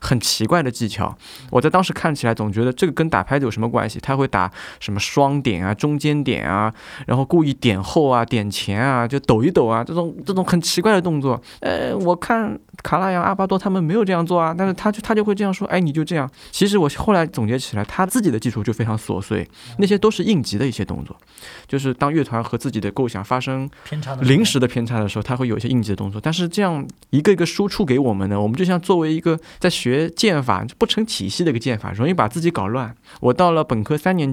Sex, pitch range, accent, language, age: male, 110-155 Hz, native, Chinese, 20-39